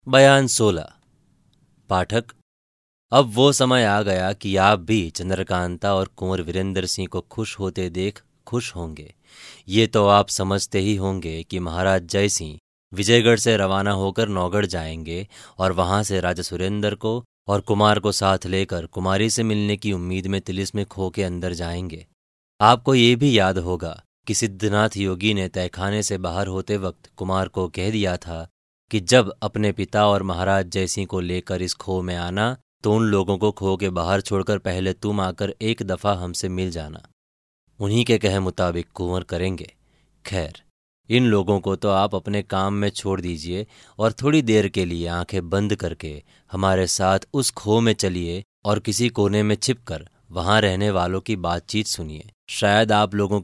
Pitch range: 90-105 Hz